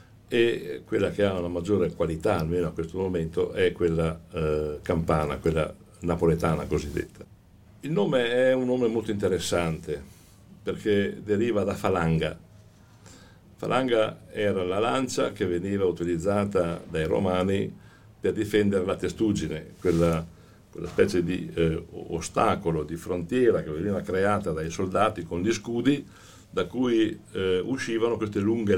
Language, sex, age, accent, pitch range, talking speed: English, male, 60-79, Italian, 85-110 Hz, 135 wpm